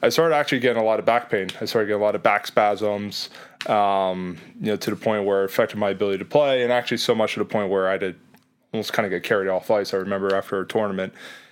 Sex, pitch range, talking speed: male, 100-125 Hz, 270 wpm